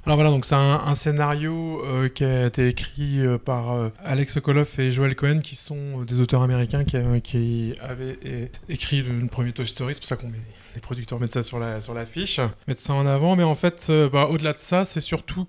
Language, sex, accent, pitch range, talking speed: French, male, French, 125-155 Hz, 240 wpm